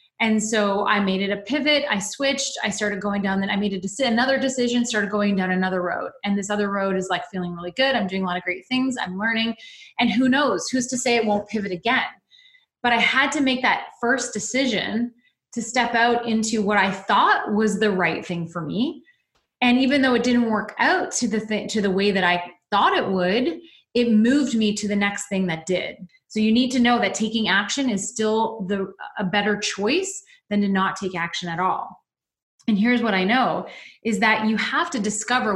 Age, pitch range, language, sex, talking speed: 20-39, 200-250 Hz, English, female, 225 wpm